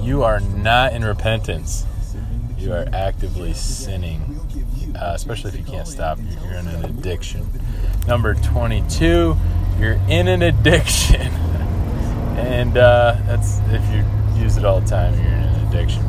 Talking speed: 145 wpm